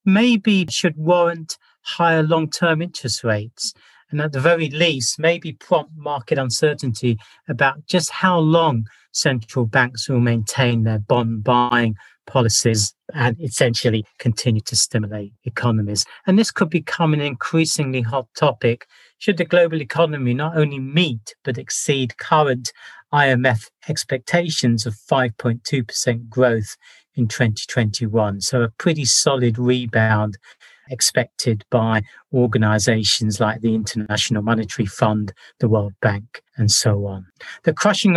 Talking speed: 125 wpm